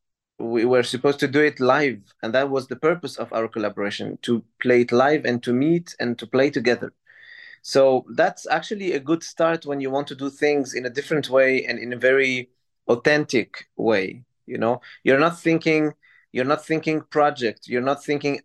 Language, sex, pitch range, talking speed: English, male, 125-160 Hz, 195 wpm